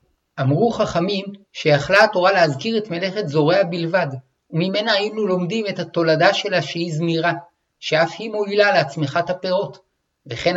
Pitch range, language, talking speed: 150-190 Hz, Hebrew, 130 wpm